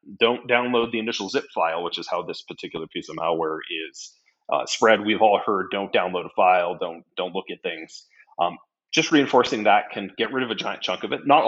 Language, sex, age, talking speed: English, male, 30-49, 225 wpm